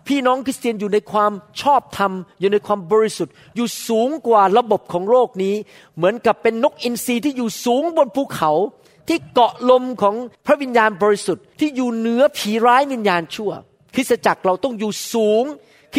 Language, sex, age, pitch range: Thai, male, 40-59, 195-255 Hz